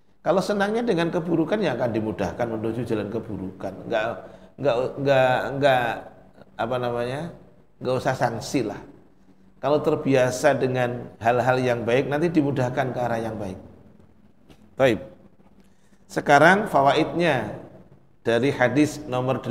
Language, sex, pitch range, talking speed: Indonesian, male, 125-160 Hz, 115 wpm